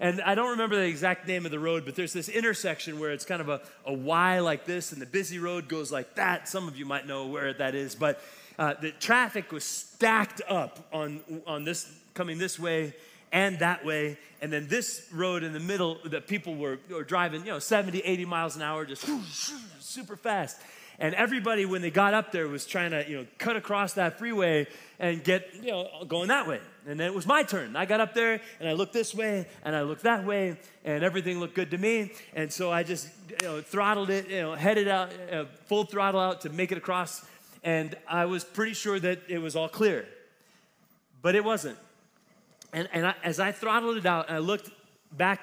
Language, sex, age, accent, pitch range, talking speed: English, male, 30-49, American, 160-205 Hz, 225 wpm